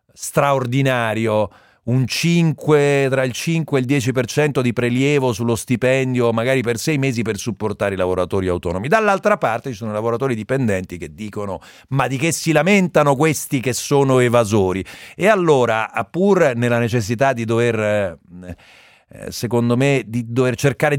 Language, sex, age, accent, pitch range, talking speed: Italian, male, 40-59, native, 105-140 Hz, 150 wpm